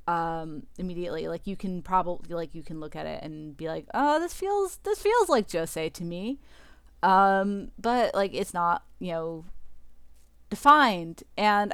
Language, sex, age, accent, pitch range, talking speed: English, female, 30-49, American, 160-195 Hz, 170 wpm